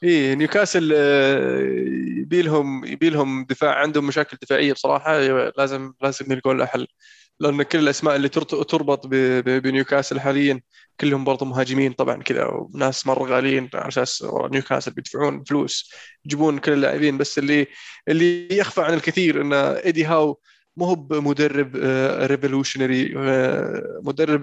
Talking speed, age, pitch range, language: 120 wpm, 20-39, 135-155 Hz, Arabic